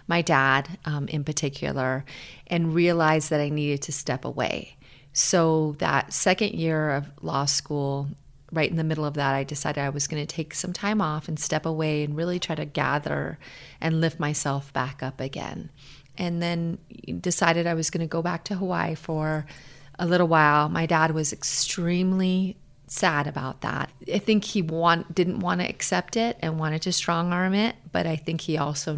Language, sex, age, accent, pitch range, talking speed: English, female, 30-49, American, 145-170 Hz, 190 wpm